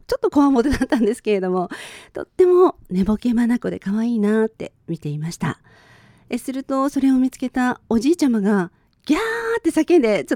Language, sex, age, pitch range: Japanese, female, 40-59, 185-275 Hz